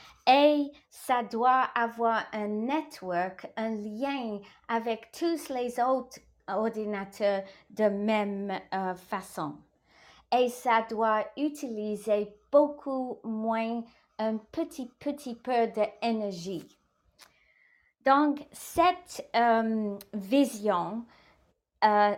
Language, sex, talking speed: English, female, 90 wpm